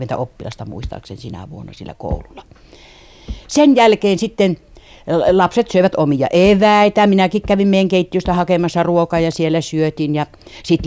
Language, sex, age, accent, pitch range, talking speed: Finnish, female, 60-79, native, 145-180 Hz, 135 wpm